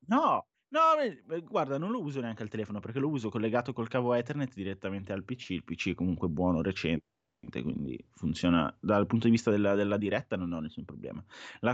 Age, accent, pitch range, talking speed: 20-39, native, 95-120 Hz, 210 wpm